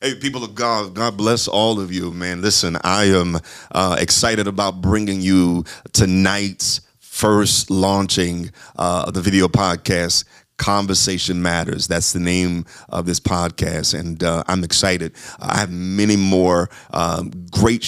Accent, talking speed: American, 145 wpm